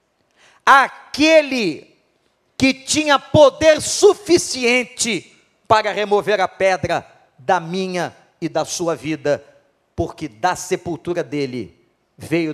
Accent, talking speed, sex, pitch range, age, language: Brazilian, 95 wpm, male, 170-230 Hz, 40-59, English